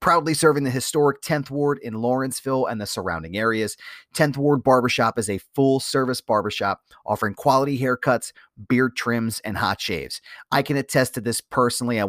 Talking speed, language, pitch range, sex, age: 175 wpm, English, 100-130 Hz, male, 30-49